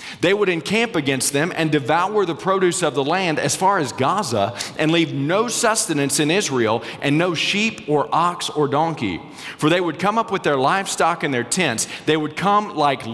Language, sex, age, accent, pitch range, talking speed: English, male, 40-59, American, 140-200 Hz, 200 wpm